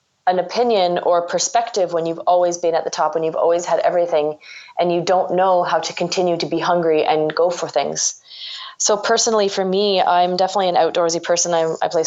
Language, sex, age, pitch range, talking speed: English, female, 20-39, 165-190 Hz, 210 wpm